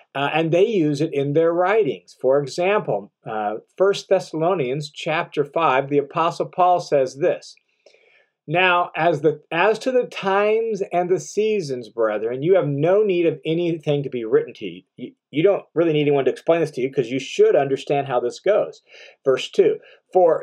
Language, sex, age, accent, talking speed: English, male, 40-59, American, 180 wpm